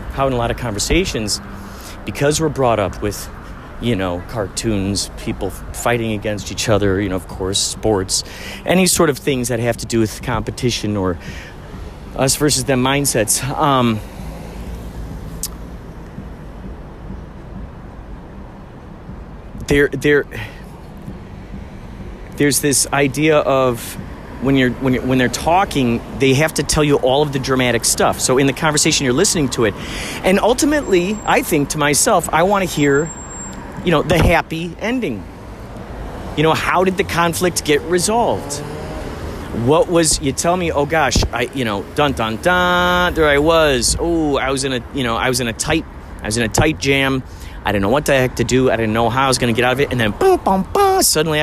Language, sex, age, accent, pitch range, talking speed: English, male, 40-59, American, 105-150 Hz, 175 wpm